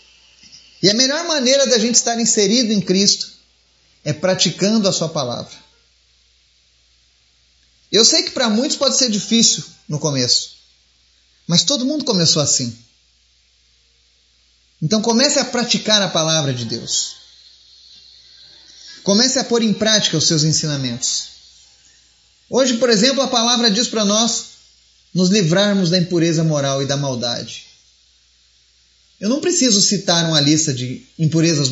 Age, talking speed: 30-49, 130 wpm